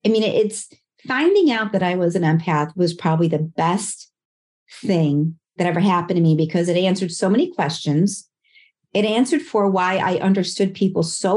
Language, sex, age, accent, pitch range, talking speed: English, female, 40-59, American, 175-230 Hz, 180 wpm